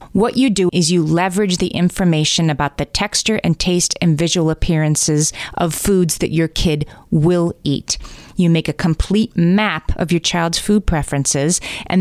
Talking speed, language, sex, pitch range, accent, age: 170 wpm, English, female, 155-190 Hz, American, 30-49